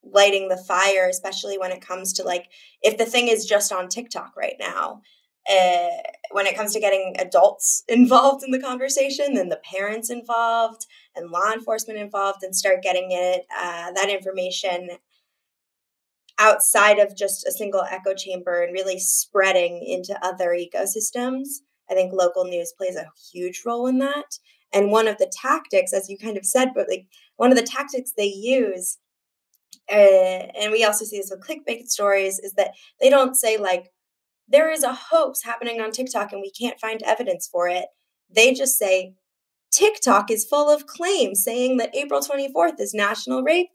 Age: 20-39